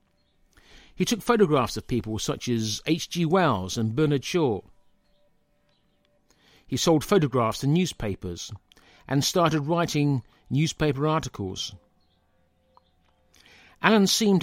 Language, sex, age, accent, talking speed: English, male, 50-69, British, 100 wpm